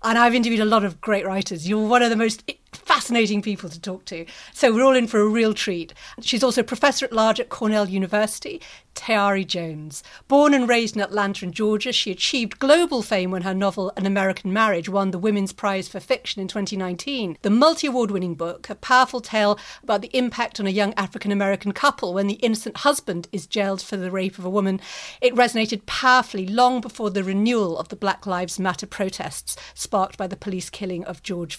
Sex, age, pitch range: female, 50-69, 190-250 Hz